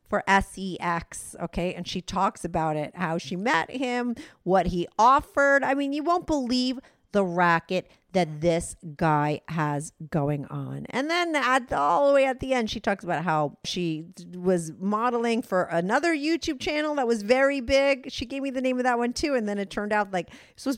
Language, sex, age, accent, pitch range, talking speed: English, female, 40-59, American, 170-250 Hz, 190 wpm